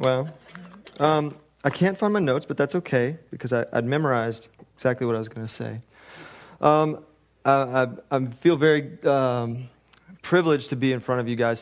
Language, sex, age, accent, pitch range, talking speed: English, male, 30-49, American, 115-140 Hz, 170 wpm